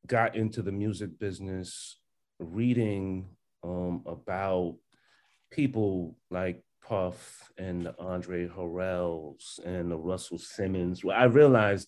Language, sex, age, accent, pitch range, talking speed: English, male, 30-49, American, 95-115 Hz, 105 wpm